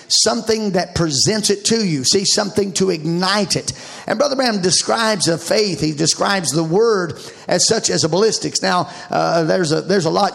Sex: male